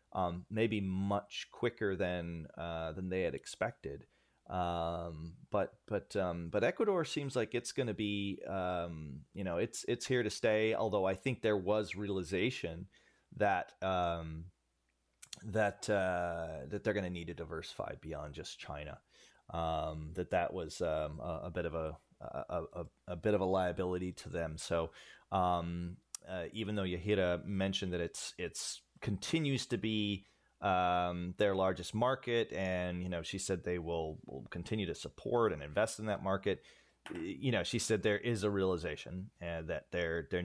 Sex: male